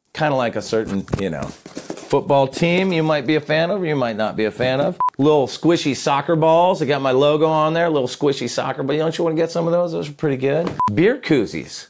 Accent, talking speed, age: American, 250 wpm, 30-49